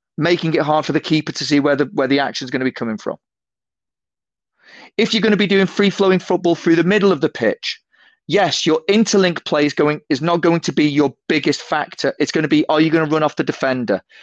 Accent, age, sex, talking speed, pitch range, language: British, 30-49, male, 250 wpm, 145-185 Hz, English